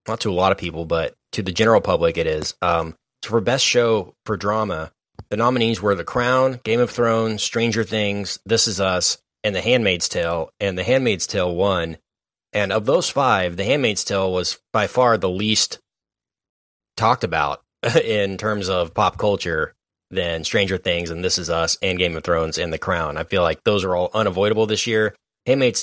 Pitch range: 90-110 Hz